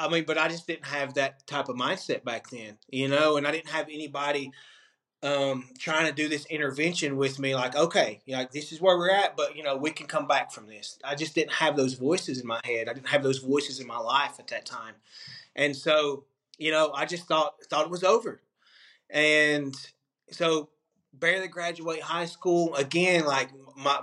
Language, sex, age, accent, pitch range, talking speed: English, male, 20-39, American, 130-150 Hz, 215 wpm